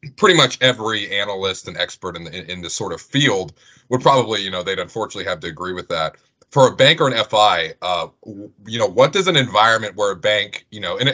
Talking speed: 230 wpm